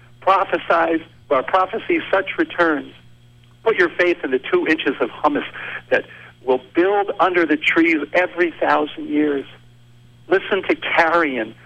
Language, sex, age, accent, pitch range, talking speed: English, male, 50-69, American, 120-185 Hz, 130 wpm